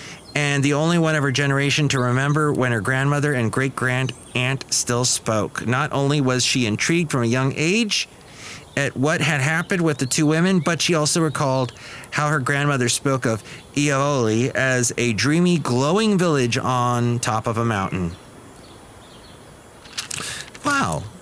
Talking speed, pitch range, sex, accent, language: 155 wpm, 115-155 Hz, male, American, English